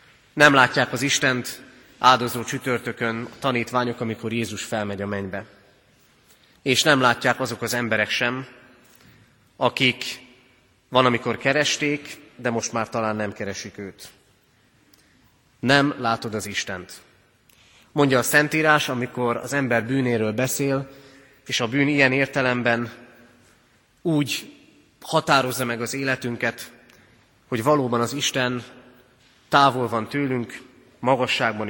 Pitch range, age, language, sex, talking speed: 115-135 Hz, 30-49, Hungarian, male, 115 wpm